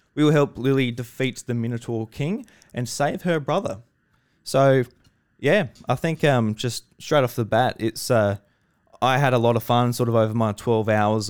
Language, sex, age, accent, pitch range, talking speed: English, male, 20-39, Australian, 100-125 Hz, 190 wpm